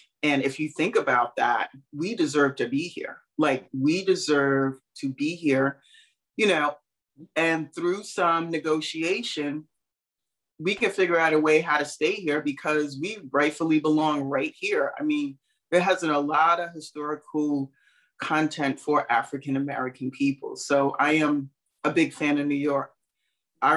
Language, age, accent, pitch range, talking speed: English, 30-49, American, 135-155 Hz, 155 wpm